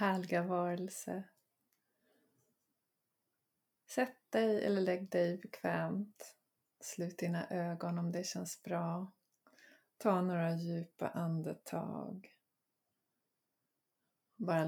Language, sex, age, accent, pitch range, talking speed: Swedish, female, 20-39, native, 170-195 Hz, 80 wpm